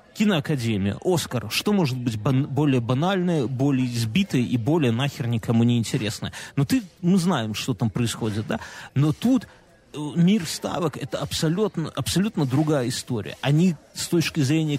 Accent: native